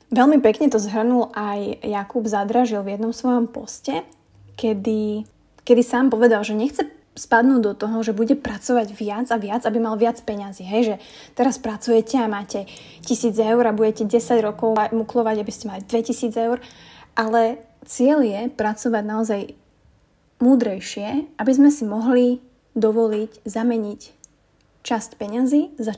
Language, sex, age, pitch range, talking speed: Slovak, female, 20-39, 205-235 Hz, 145 wpm